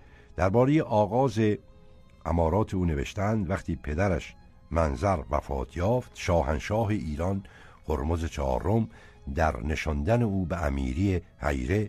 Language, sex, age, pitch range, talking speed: Persian, male, 60-79, 75-100 Hz, 100 wpm